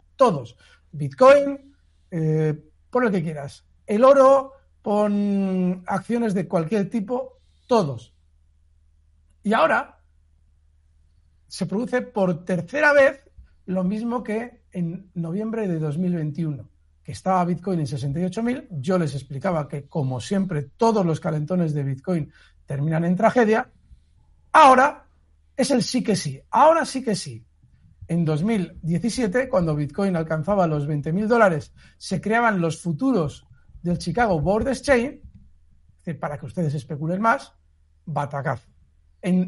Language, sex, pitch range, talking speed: Spanish, male, 135-215 Hz, 125 wpm